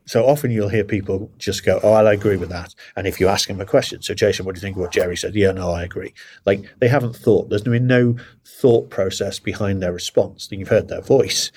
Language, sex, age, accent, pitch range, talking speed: English, male, 50-69, British, 90-110 Hz, 270 wpm